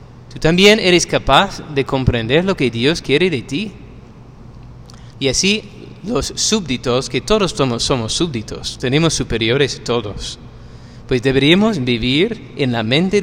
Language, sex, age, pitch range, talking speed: Spanish, male, 30-49, 120-170 Hz, 125 wpm